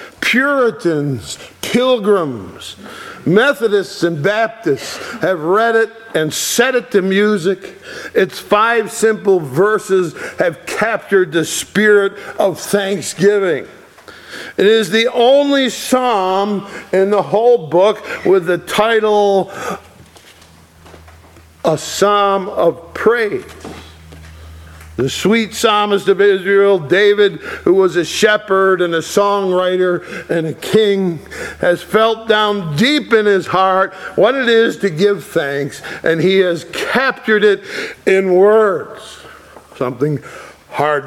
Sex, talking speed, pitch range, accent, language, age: male, 115 wpm, 170-230 Hz, American, English, 50-69